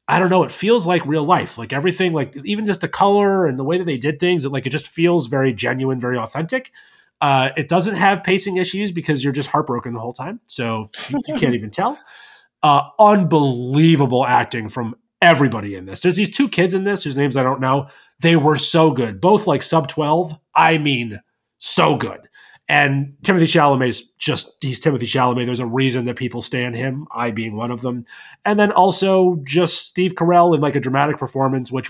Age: 30-49